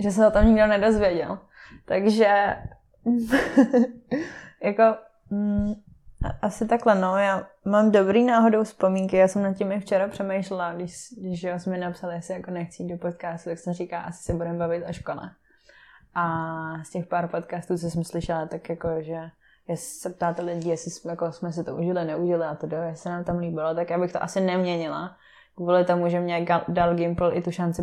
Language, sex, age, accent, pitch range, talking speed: Czech, female, 20-39, native, 170-190 Hz, 185 wpm